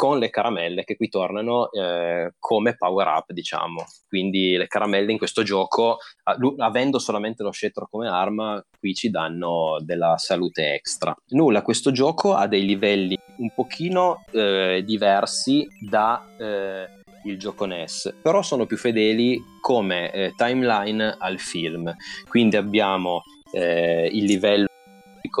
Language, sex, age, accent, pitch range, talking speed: Italian, male, 20-39, native, 95-115 Hz, 140 wpm